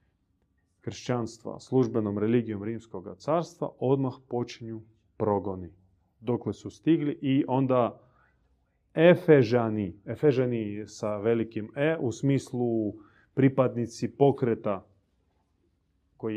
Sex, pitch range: male, 100-125 Hz